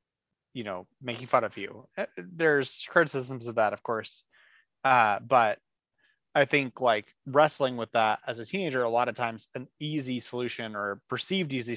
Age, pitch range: 30-49, 115-145 Hz